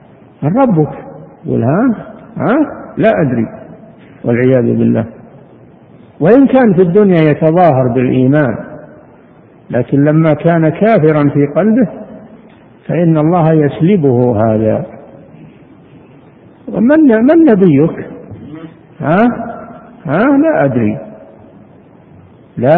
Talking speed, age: 85 wpm, 60-79